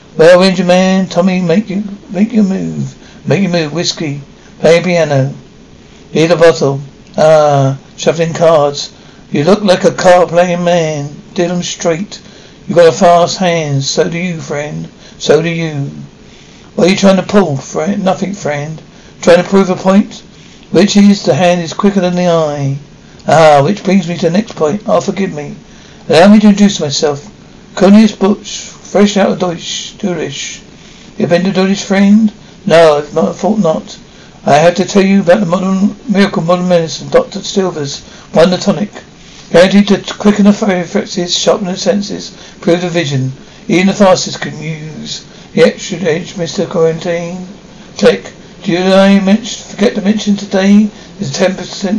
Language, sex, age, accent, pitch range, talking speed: English, male, 60-79, British, 165-195 Hz, 165 wpm